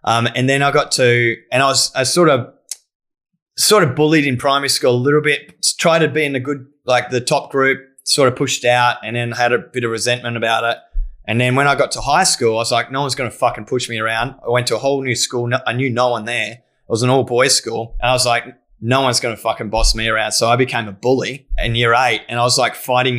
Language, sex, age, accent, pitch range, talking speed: English, male, 20-39, Australian, 115-135 Hz, 270 wpm